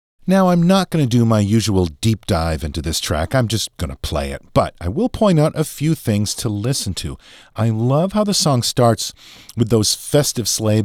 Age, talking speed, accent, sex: 50-69, 220 wpm, American, male